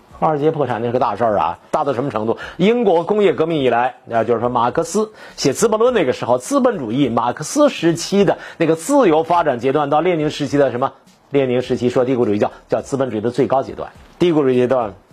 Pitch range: 115-170 Hz